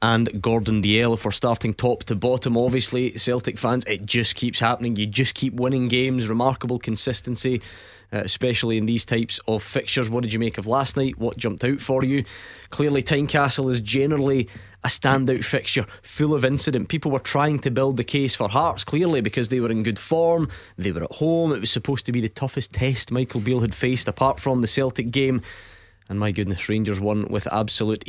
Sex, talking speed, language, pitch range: male, 205 wpm, English, 110-130 Hz